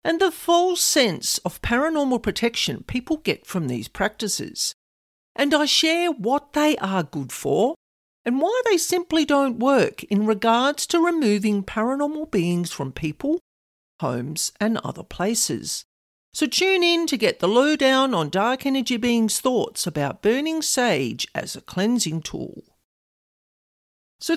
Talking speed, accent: 145 wpm, Australian